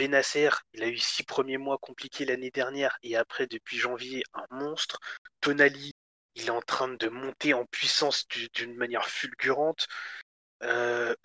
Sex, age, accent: male, 20-39, French